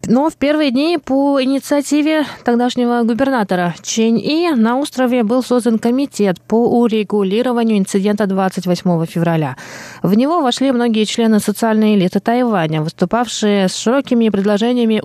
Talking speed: 130 wpm